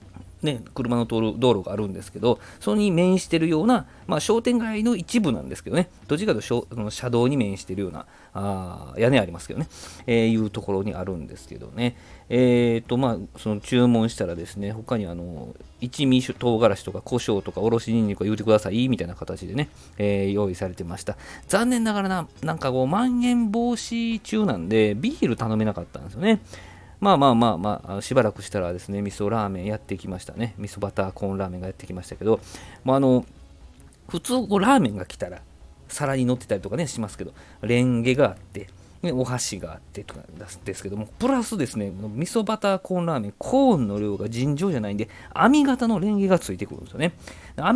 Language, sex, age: Japanese, male, 40-59